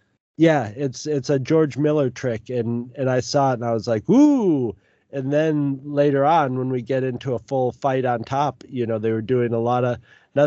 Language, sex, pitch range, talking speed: English, male, 110-145 Hz, 225 wpm